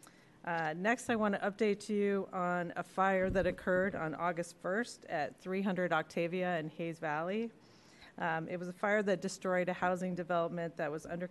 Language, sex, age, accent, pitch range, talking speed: English, female, 40-59, American, 170-195 Hz, 180 wpm